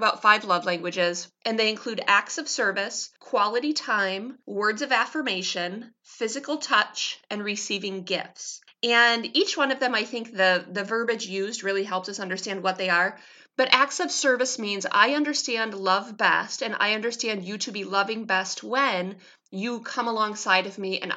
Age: 30-49